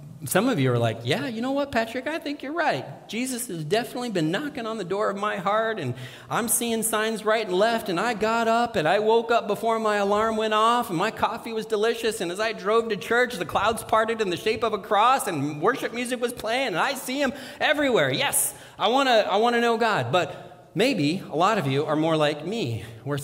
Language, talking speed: English, 245 wpm